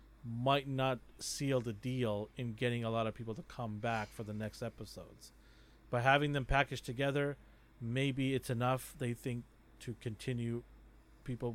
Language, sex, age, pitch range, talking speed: English, male, 40-59, 110-130 Hz, 160 wpm